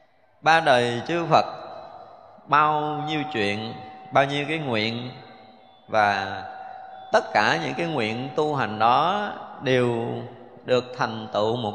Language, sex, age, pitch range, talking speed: Vietnamese, male, 20-39, 115-155 Hz, 130 wpm